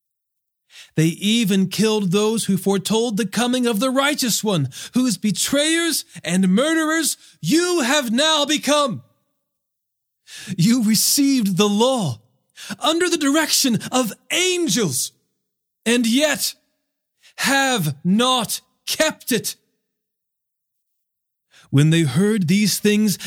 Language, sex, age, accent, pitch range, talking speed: English, male, 40-59, American, 155-235 Hz, 105 wpm